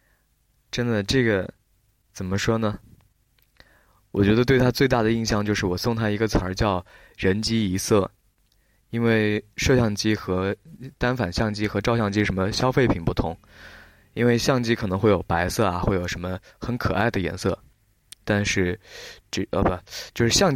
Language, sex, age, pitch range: Chinese, male, 20-39, 95-115 Hz